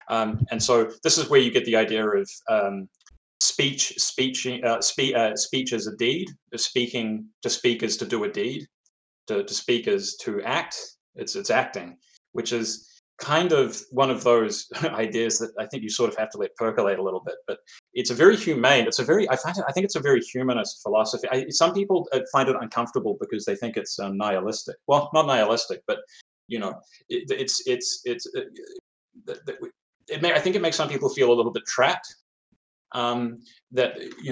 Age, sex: 20-39, male